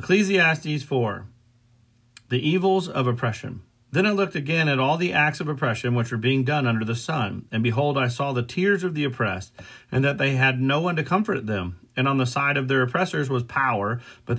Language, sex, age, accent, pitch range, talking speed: English, male, 40-59, American, 120-150 Hz, 215 wpm